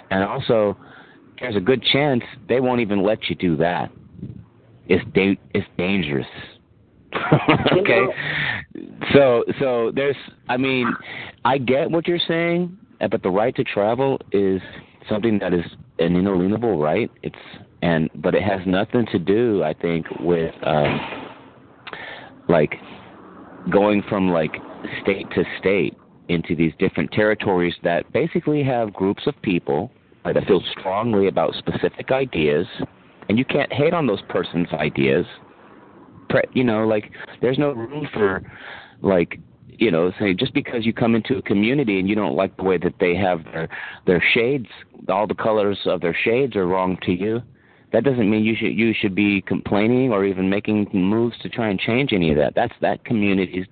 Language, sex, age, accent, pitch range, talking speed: English, male, 40-59, American, 90-120 Hz, 165 wpm